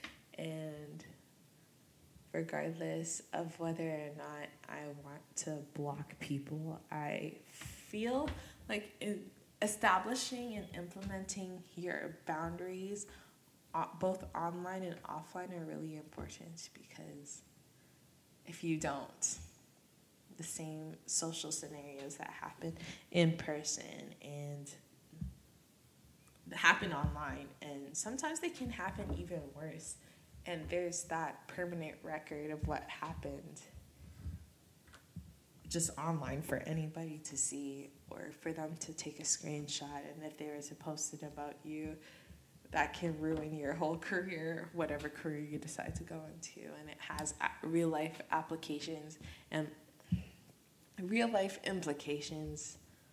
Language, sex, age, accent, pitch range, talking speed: English, female, 20-39, American, 150-170 Hz, 115 wpm